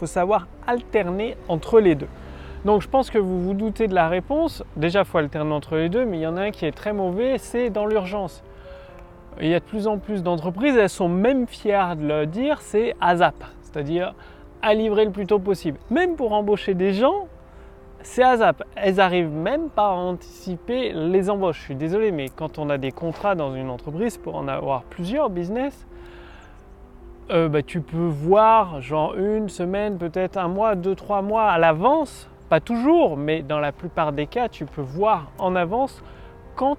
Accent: French